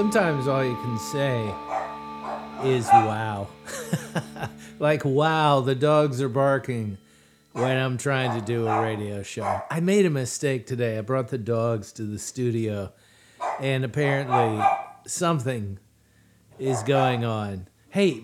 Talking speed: 130 wpm